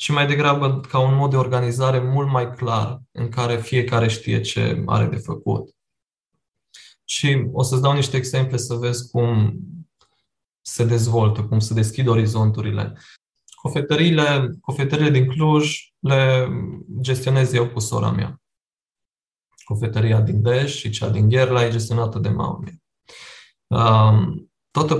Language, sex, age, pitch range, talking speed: Romanian, male, 20-39, 115-135 Hz, 135 wpm